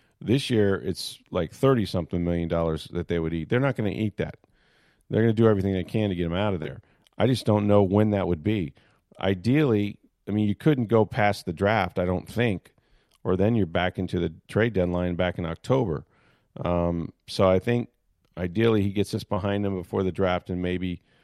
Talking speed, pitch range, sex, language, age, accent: 215 wpm, 90-110 Hz, male, English, 40-59, American